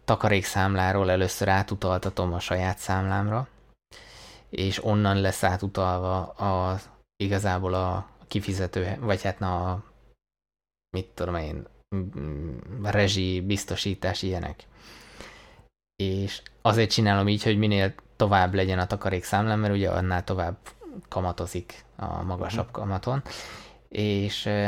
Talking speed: 110 wpm